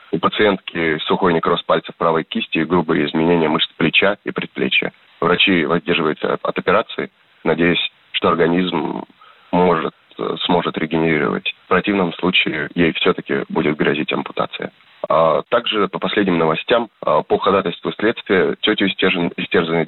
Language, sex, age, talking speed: Russian, male, 30-49, 125 wpm